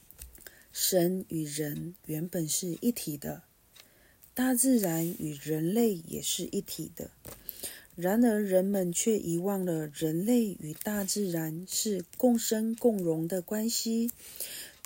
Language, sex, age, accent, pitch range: Chinese, female, 40-59, native, 165-220 Hz